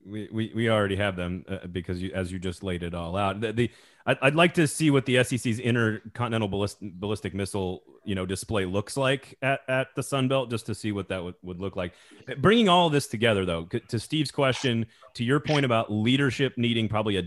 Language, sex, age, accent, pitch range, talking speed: English, male, 30-49, American, 100-125 Hz, 225 wpm